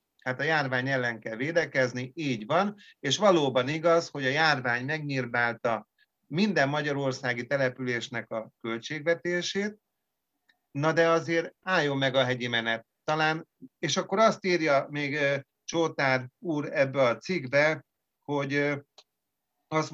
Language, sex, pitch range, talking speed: Hungarian, male, 130-160 Hz, 125 wpm